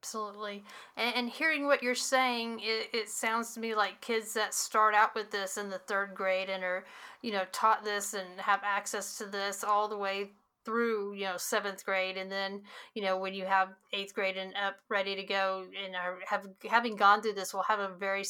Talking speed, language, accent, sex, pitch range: 215 wpm, English, American, female, 190-215 Hz